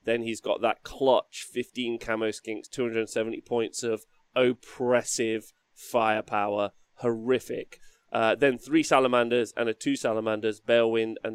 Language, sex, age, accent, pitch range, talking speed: English, male, 20-39, British, 110-130 Hz, 125 wpm